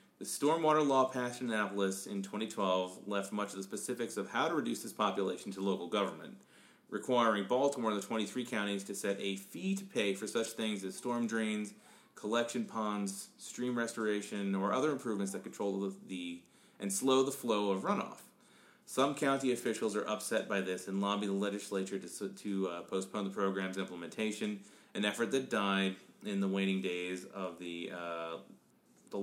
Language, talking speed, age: English, 180 wpm, 30-49